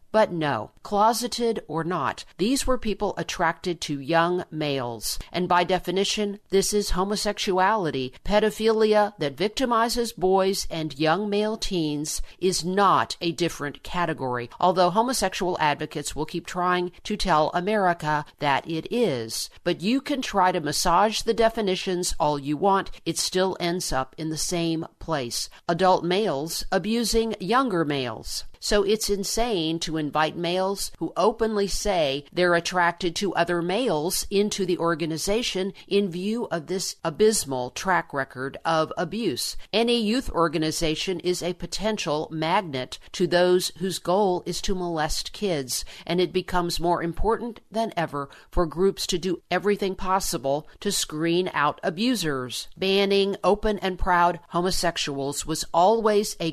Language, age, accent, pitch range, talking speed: English, 50-69, American, 160-200 Hz, 140 wpm